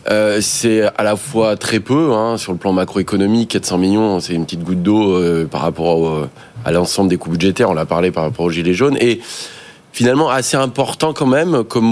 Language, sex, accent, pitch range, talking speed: French, male, French, 95-120 Hz, 215 wpm